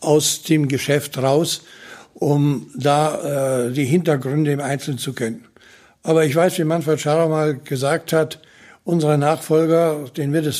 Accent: German